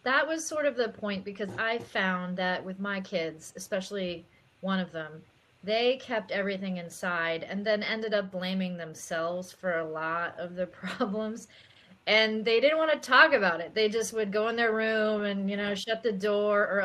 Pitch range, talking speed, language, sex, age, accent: 180-220 Hz, 195 wpm, English, female, 30-49, American